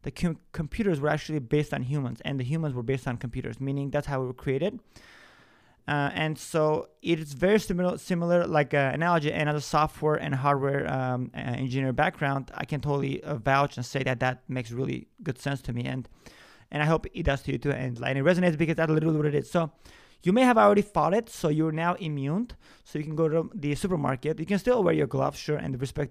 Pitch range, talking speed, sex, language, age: 140-170 Hz, 235 wpm, male, English, 30-49